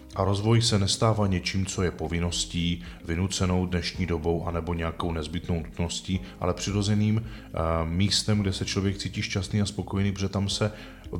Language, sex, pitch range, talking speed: Czech, male, 90-105 Hz, 155 wpm